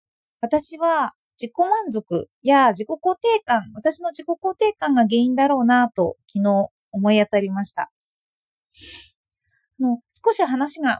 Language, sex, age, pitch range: Japanese, female, 20-39, 210-340 Hz